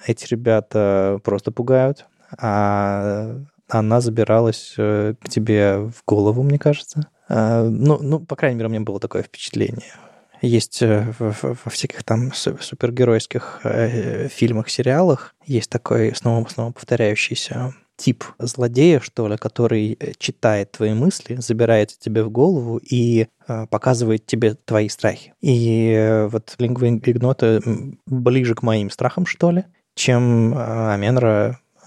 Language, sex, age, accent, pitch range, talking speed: Russian, male, 20-39, native, 110-130 Hz, 120 wpm